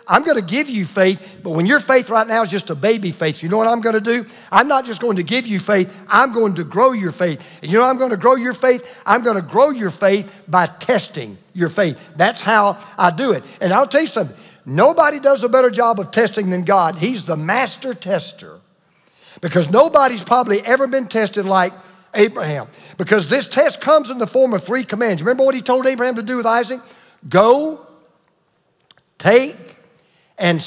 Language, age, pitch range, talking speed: English, 50-69, 180-240 Hz, 210 wpm